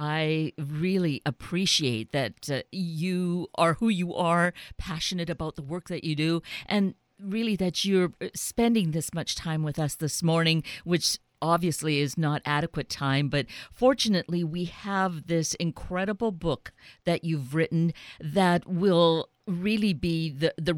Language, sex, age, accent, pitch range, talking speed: English, female, 50-69, American, 155-185 Hz, 145 wpm